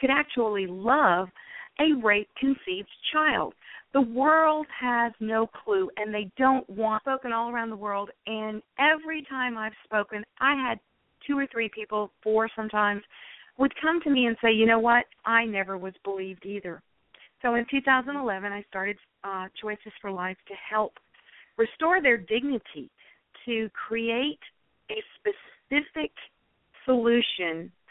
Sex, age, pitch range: female, 50-69, 195-250 Hz